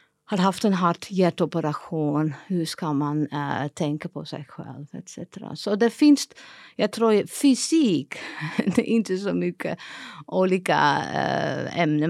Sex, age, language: female, 50-69, Swedish